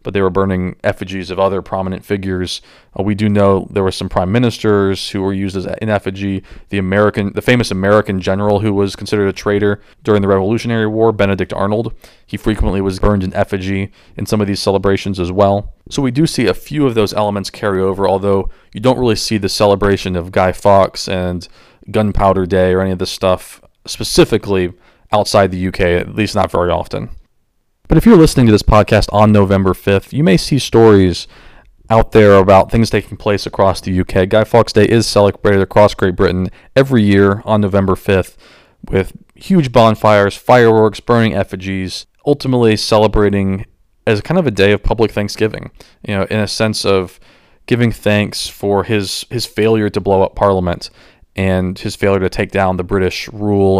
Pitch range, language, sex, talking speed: 95-110 Hz, English, male, 190 wpm